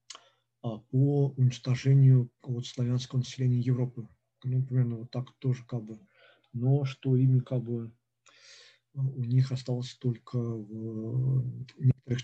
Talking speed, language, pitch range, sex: 120 wpm, Russian, 120-130 Hz, male